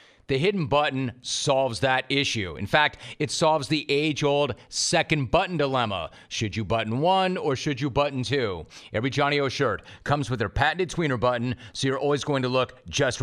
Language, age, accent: English, 40-59, American